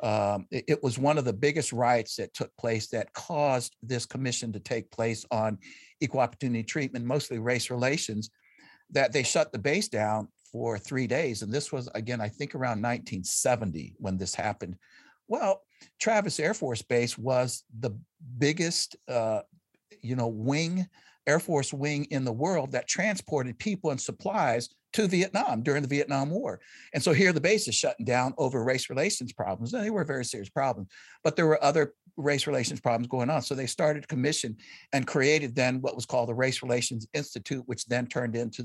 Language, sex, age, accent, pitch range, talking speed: English, male, 60-79, American, 120-145 Hz, 190 wpm